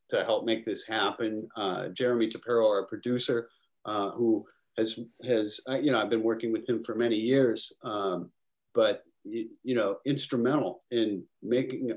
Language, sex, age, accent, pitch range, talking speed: English, male, 40-59, American, 110-130 Hz, 160 wpm